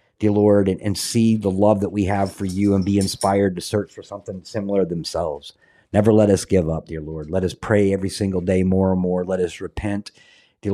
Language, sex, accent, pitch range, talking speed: English, male, American, 95-110 Hz, 230 wpm